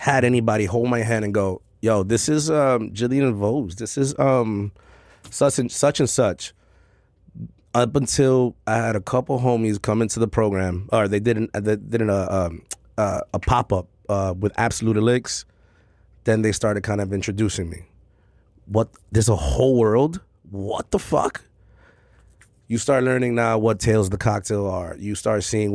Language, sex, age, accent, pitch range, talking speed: English, male, 30-49, American, 100-120 Hz, 170 wpm